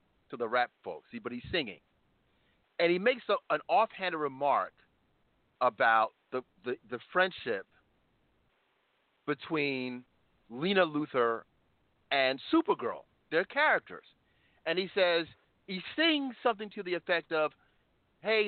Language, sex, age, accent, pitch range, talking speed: English, male, 40-59, American, 130-185 Hz, 125 wpm